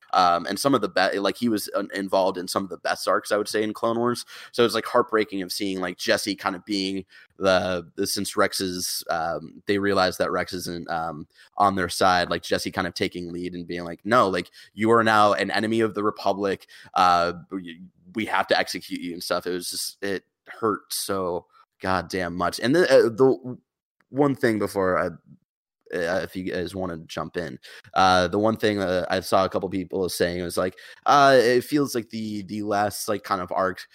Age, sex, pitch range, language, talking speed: 20-39, male, 90-110 Hz, English, 220 wpm